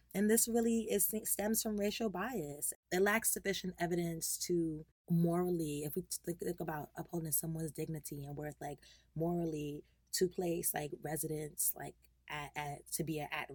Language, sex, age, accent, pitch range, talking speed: English, female, 20-39, American, 150-175 Hz, 160 wpm